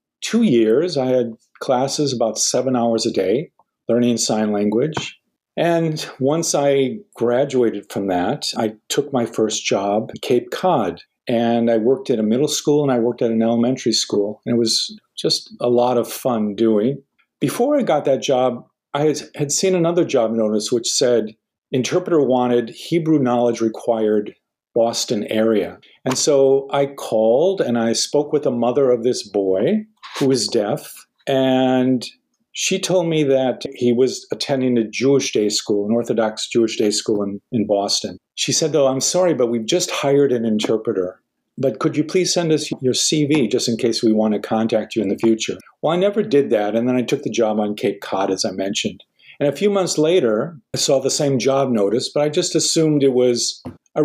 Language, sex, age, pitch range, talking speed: English, male, 50-69, 115-150 Hz, 190 wpm